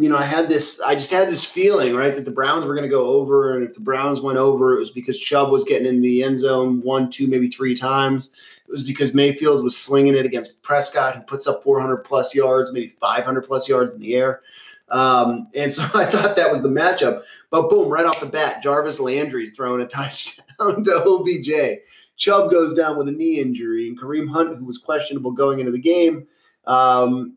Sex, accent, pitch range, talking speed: male, American, 125-155 Hz, 225 wpm